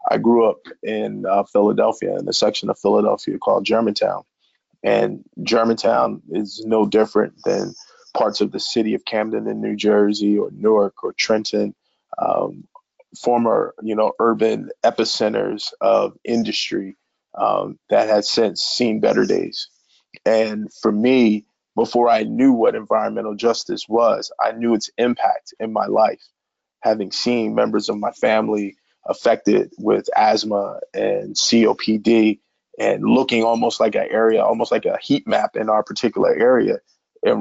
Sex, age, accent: male, 20-39, American